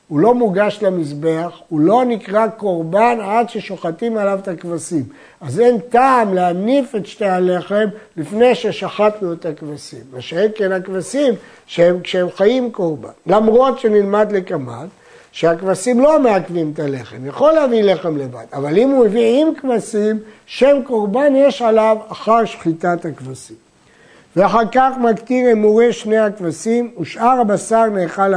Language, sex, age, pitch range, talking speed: Hebrew, male, 60-79, 170-225 Hz, 140 wpm